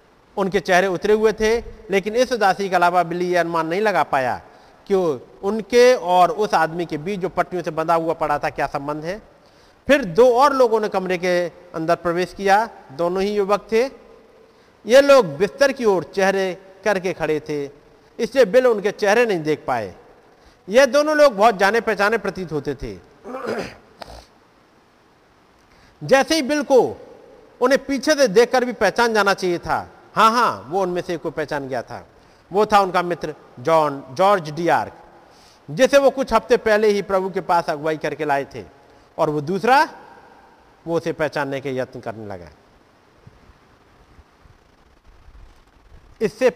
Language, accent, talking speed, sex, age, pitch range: Hindi, native, 160 wpm, male, 50-69, 155-225 Hz